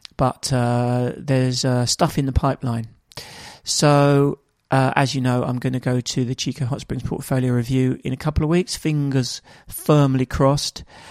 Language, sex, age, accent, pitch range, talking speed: English, male, 40-59, British, 125-150 Hz, 175 wpm